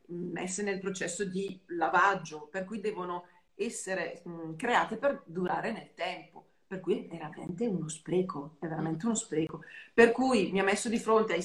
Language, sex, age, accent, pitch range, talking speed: Italian, female, 40-59, native, 170-210 Hz, 170 wpm